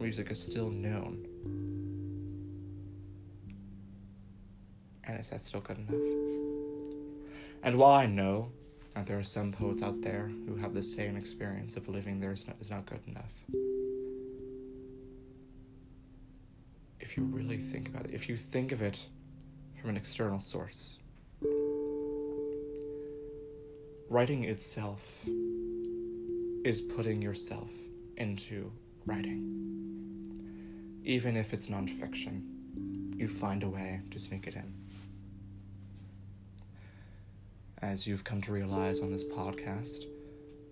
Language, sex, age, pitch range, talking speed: English, male, 30-49, 100-130 Hz, 115 wpm